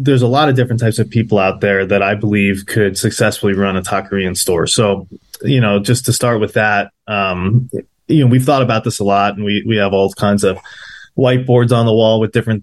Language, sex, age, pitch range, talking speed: English, male, 20-39, 105-130 Hz, 235 wpm